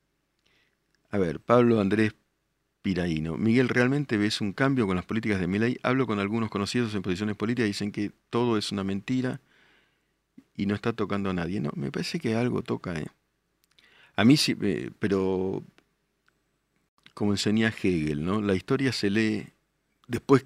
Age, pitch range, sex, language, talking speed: 50-69, 90-115 Hz, male, Spanish, 160 wpm